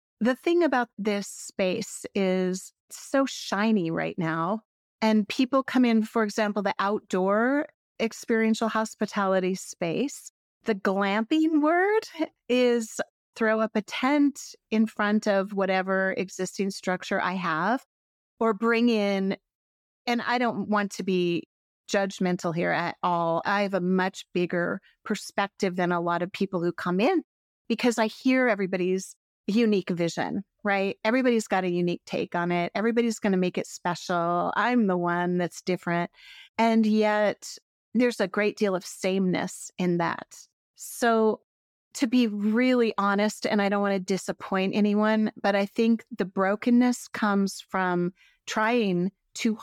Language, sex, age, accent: English, female, 30-49, American